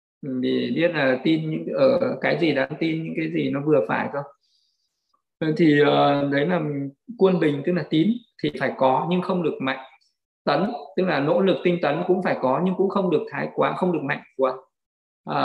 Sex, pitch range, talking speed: male, 145-185 Hz, 200 wpm